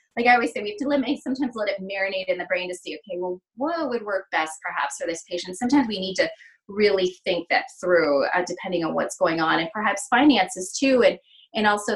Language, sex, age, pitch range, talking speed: English, female, 20-39, 185-245 Hz, 245 wpm